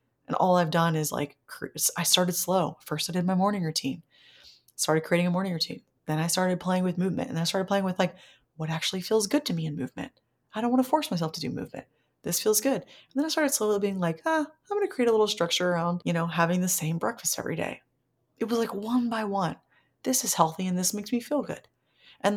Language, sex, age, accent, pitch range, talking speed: English, female, 30-49, American, 160-215 Hz, 245 wpm